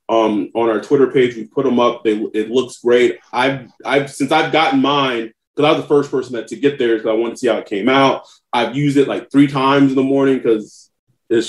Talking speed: 255 wpm